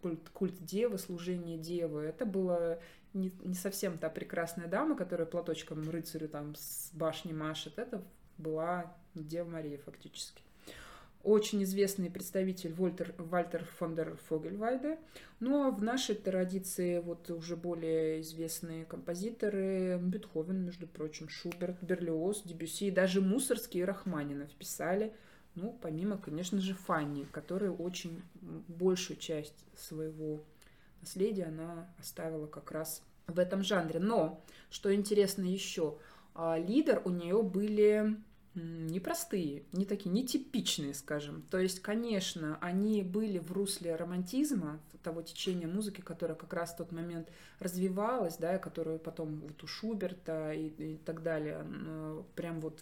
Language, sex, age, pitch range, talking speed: Russian, female, 20-39, 160-195 Hz, 125 wpm